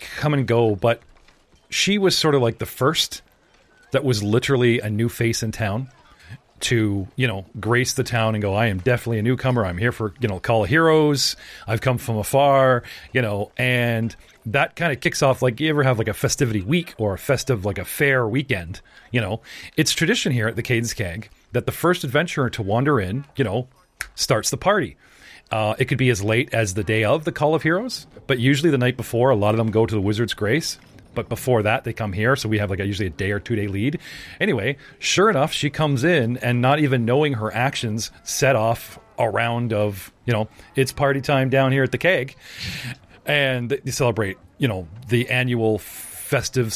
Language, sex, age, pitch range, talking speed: English, male, 40-59, 110-135 Hz, 215 wpm